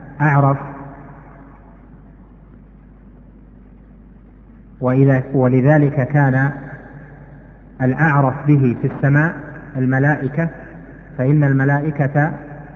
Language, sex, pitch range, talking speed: Arabic, male, 130-145 Hz, 50 wpm